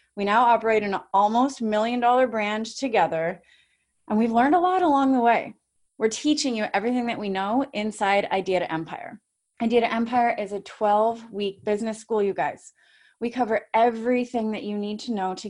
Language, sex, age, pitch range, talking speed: English, female, 30-49, 190-235 Hz, 185 wpm